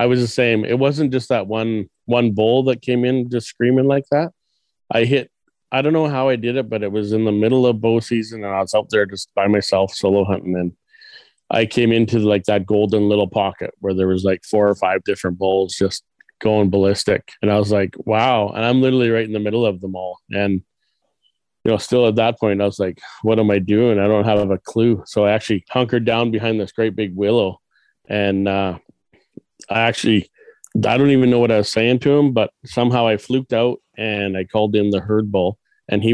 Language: English